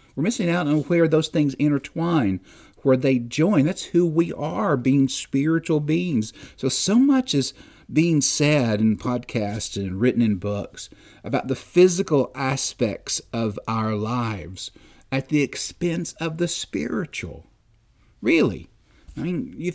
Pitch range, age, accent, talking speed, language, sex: 105-150 Hz, 50-69, American, 145 wpm, English, male